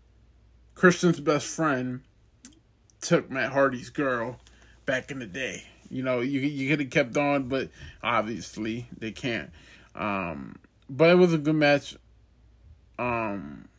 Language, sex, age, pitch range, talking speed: English, male, 20-39, 110-155 Hz, 135 wpm